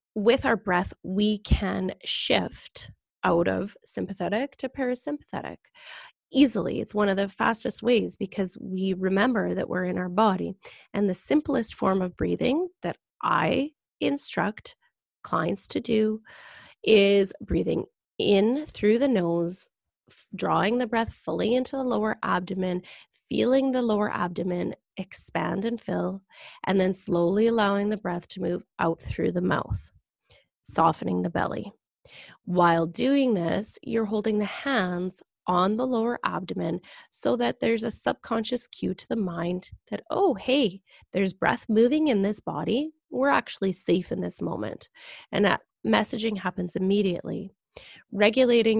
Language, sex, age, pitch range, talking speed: English, female, 20-39, 185-235 Hz, 140 wpm